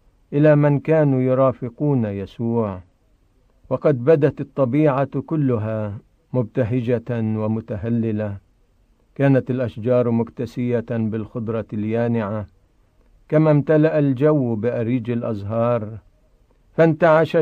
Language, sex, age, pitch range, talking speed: Arabic, male, 50-69, 110-140 Hz, 75 wpm